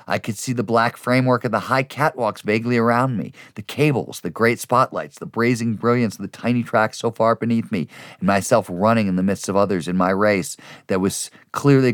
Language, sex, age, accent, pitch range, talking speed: English, male, 40-59, American, 95-120 Hz, 215 wpm